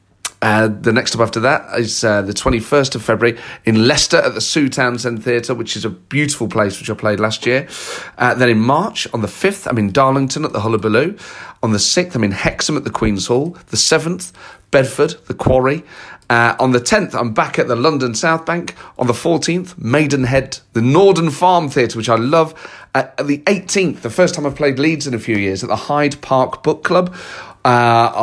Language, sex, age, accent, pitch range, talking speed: English, male, 40-59, British, 115-150 Hz, 215 wpm